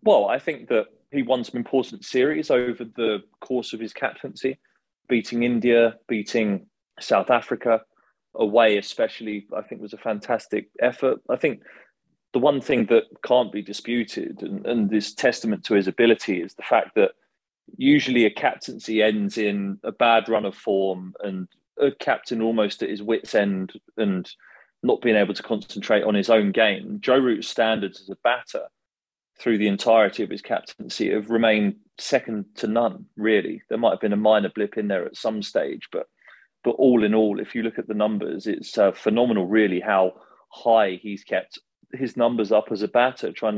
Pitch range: 105-125 Hz